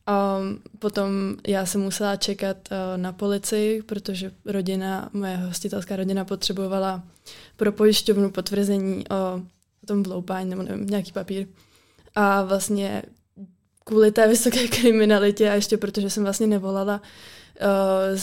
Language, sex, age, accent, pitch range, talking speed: Czech, female, 20-39, native, 190-205 Hz, 130 wpm